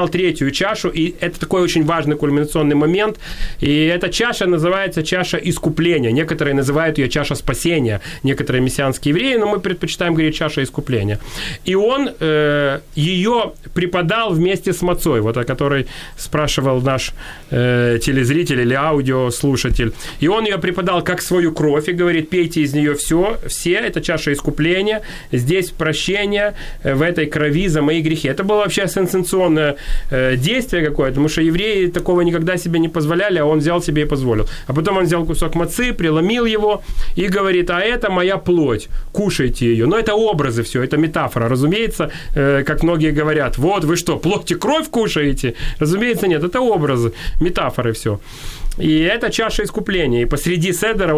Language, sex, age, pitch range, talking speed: Ukrainian, male, 30-49, 145-180 Hz, 160 wpm